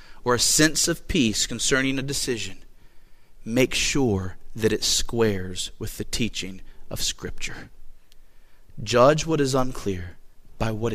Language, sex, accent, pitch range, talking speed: English, male, American, 115-195 Hz, 130 wpm